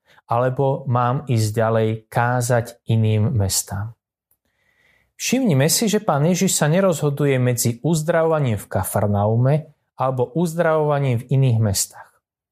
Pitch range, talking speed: 110-145 Hz, 110 wpm